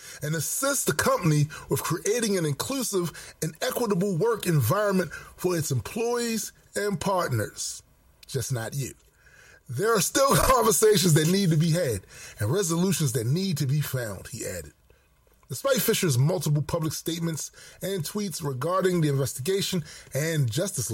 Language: English